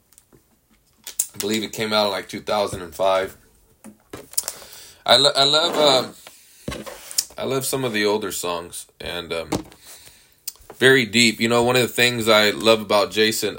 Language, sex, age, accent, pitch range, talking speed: English, male, 20-39, American, 95-115 Hz, 150 wpm